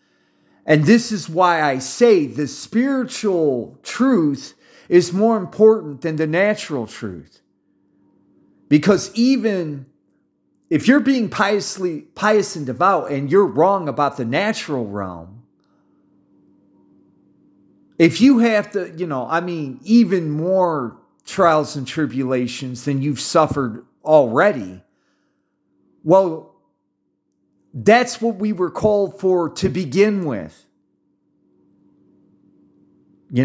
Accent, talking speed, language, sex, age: American, 110 wpm, English, male, 40-59